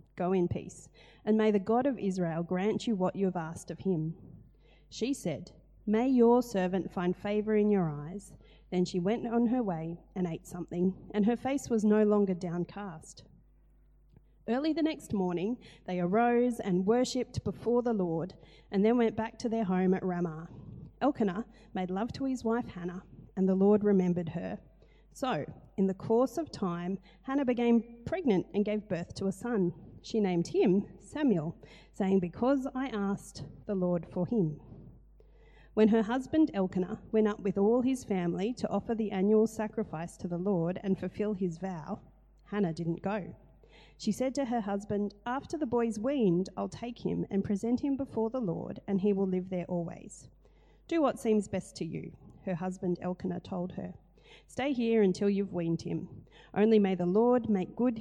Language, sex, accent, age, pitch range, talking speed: English, female, Australian, 30-49, 180-230 Hz, 180 wpm